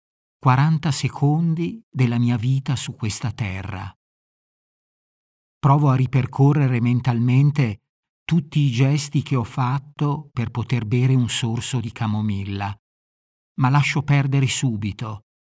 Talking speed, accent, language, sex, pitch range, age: 110 wpm, native, Italian, male, 115-145 Hz, 50-69